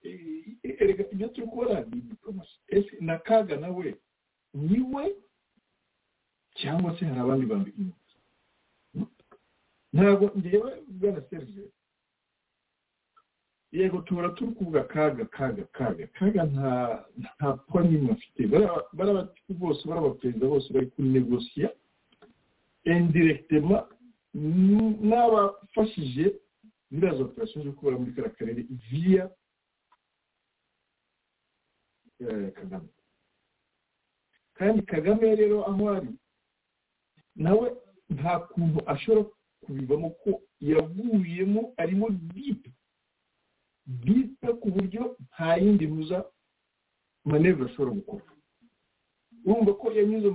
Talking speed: 75 wpm